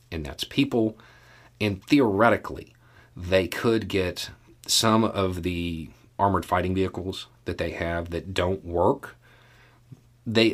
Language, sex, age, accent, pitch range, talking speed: English, male, 40-59, American, 85-120 Hz, 120 wpm